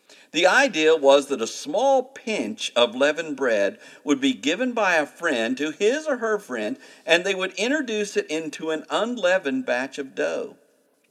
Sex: male